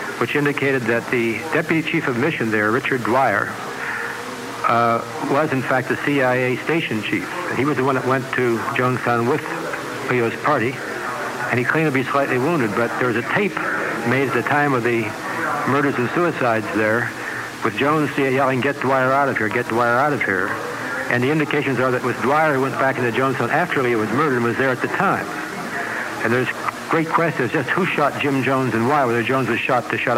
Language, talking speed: English, 210 wpm